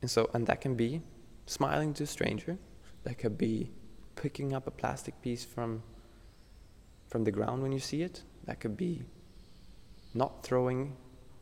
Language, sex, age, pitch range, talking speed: English, male, 20-39, 95-130 Hz, 165 wpm